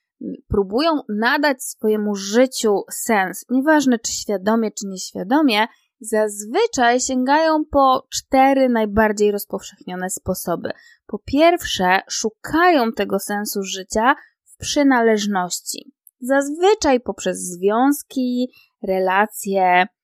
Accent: native